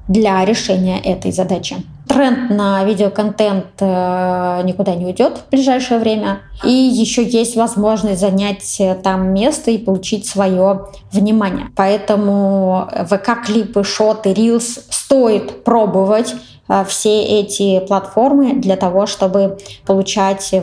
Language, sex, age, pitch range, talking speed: Russian, female, 20-39, 195-230 Hz, 110 wpm